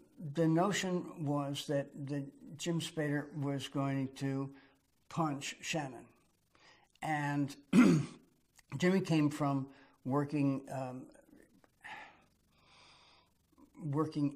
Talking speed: 80 wpm